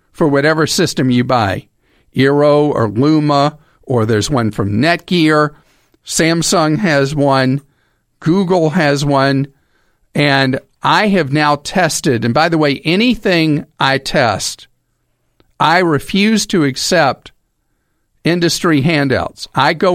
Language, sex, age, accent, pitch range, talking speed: English, male, 50-69, American, 130-160 Hz, 115 wpm